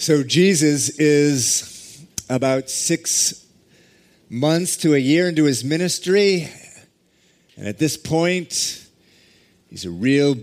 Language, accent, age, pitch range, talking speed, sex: English, American, 40-59, 110-145 Hz, 110 wpm, male